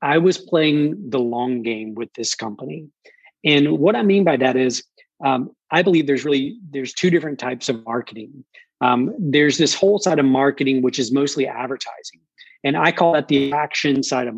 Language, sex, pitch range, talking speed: English, male, 130-165 Hz, 190 wpm